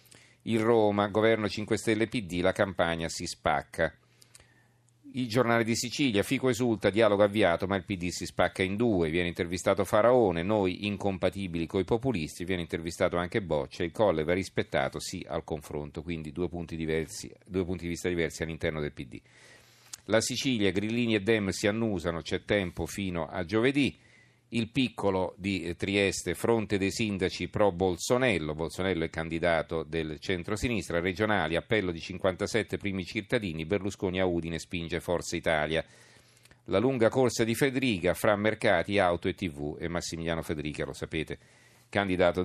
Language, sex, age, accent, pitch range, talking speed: Italian, male, 40-59, native, 85-110 Hz, 155 wpm